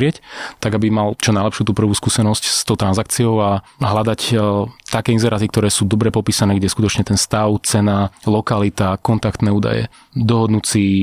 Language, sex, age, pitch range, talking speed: Slovak, male, 30-49, 100-115 Hz, 150 wpm